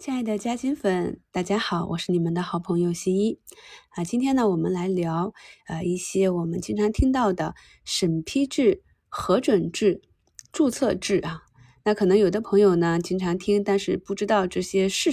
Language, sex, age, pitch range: Chinese, female, 20-39, 175-220 Hz